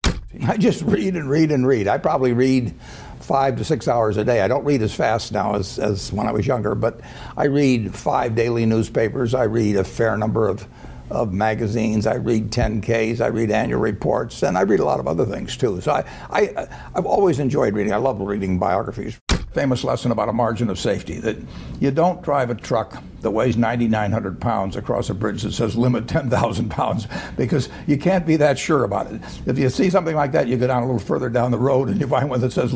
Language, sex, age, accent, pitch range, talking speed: English, male, 60-79, American, 105-125 Hz, 225 wpm